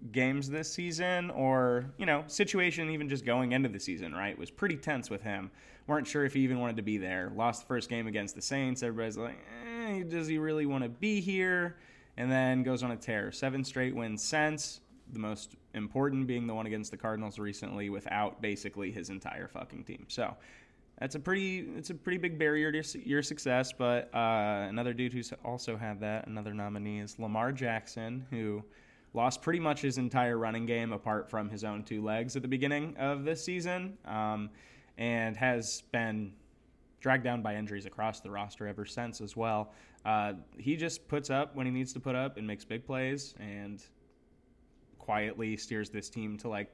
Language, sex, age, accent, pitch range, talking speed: English, male, 20-39, American, 105-140 Hz, 195 wpm